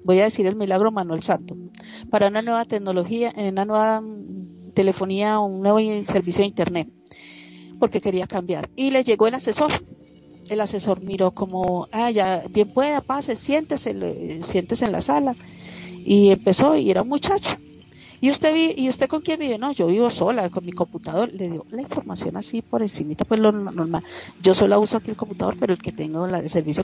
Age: 40-59